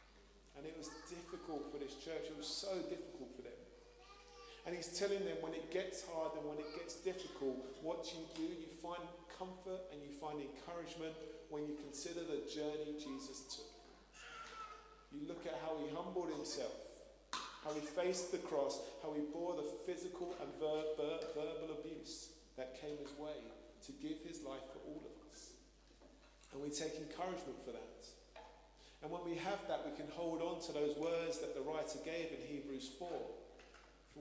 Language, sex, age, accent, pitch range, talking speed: English, male, 40-59, British, 150-185 Hz, 175 wpm